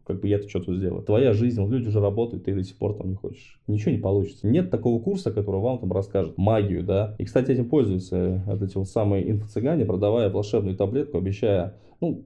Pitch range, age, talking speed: 100-125 Hz, 20-39, 210 wpm